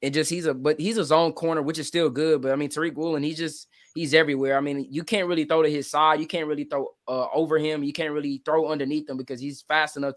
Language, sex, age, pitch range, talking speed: English, male, 20-39, 135-160 Hz, 285 wpm